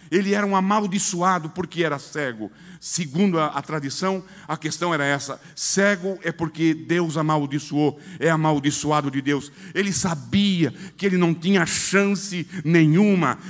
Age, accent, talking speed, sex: 60-79, Brazilian, 140 wpm, male